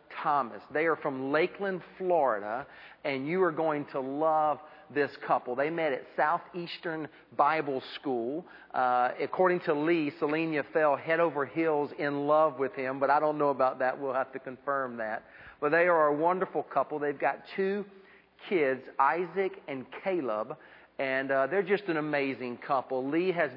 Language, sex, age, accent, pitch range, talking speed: English, male, 40-59, American, 135-165 Hz, 170 wpm